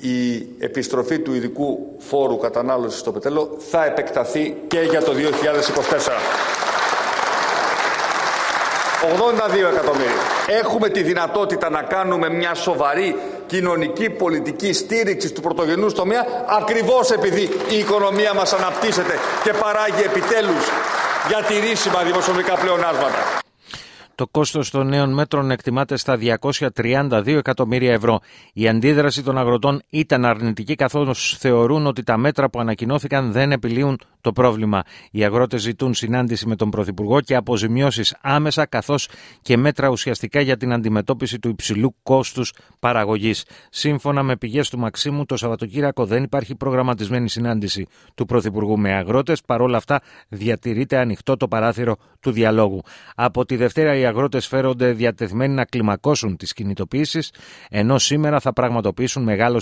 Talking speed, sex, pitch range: 130 wpm, male, 115-150 Hz